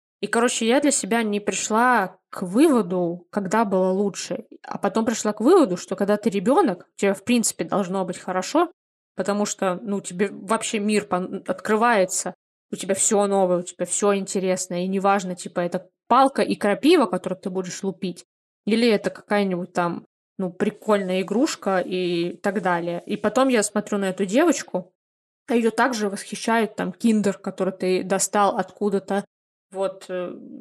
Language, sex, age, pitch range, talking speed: Russian, female, 20-39, 185-210 Hz, 160 wpm